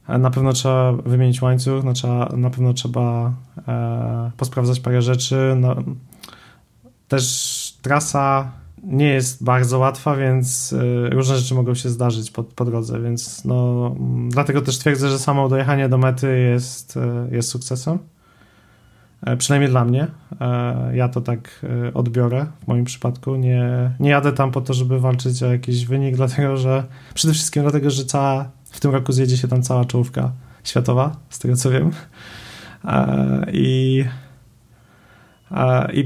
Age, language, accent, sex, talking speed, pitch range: 30-49, Polish, native, male, 135 wpm, 120-135 Hz